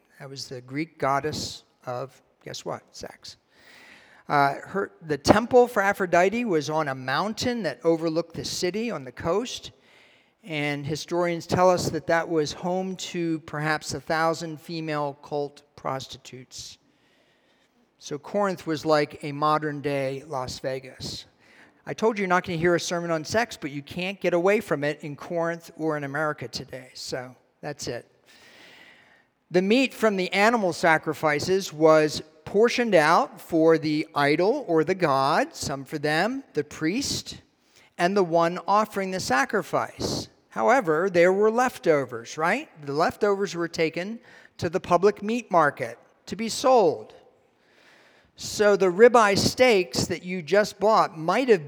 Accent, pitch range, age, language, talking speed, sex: American, 150-195 Hz, 50-69, English, 150 wpm, male